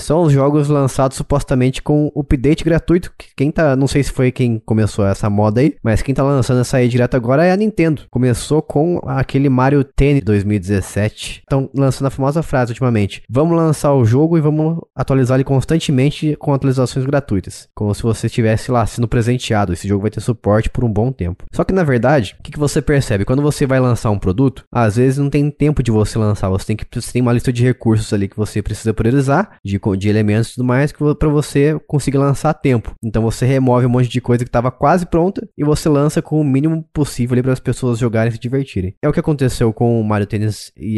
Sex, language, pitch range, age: male, Portuguese, 110-145 Hz, 20-39